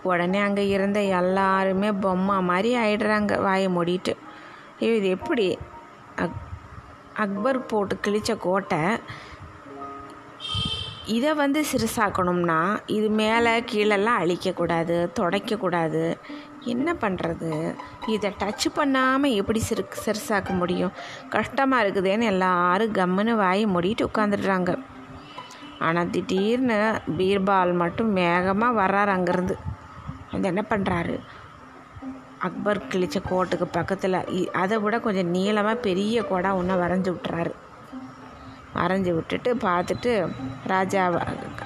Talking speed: 95 wpm